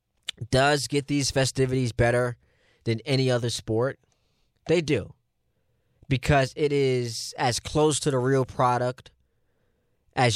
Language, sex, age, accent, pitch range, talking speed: English, male, 20-39, American, 120-145 Hz, 120 wpm